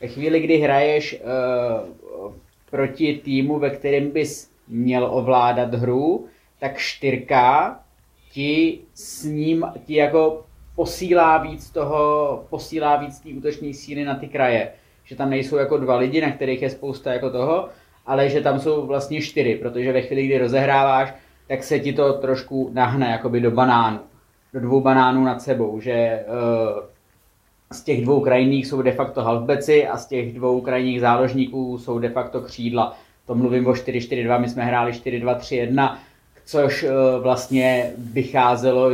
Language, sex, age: Czech, male, 20-39